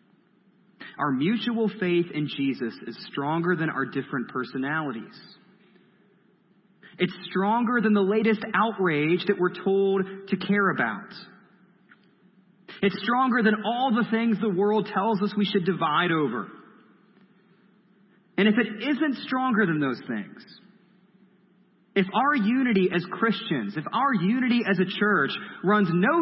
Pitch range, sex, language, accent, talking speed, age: 175-215 Hz, male, English, American, 135 wpm, 30-49